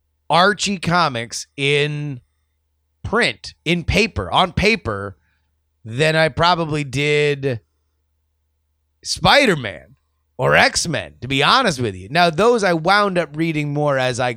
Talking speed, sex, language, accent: 120 wpm, male, English, American